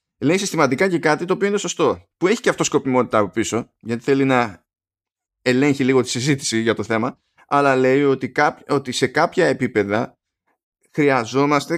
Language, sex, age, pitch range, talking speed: Greek, male, 20-39, 110-140 Hz, 175 wpm